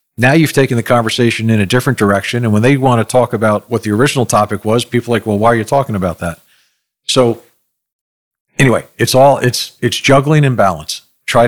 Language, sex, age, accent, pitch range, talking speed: English, male, 50-69, American, 100-125 Hz, 215 wpm